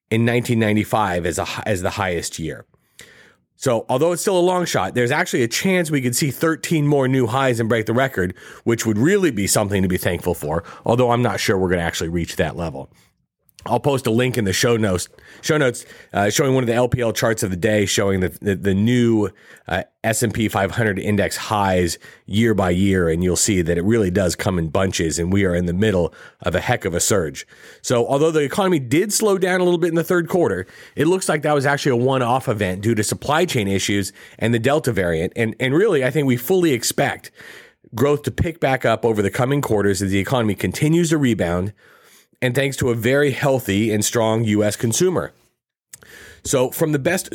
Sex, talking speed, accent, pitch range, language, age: male, 220 wpm, American, 100-140 Hz, English, 40-59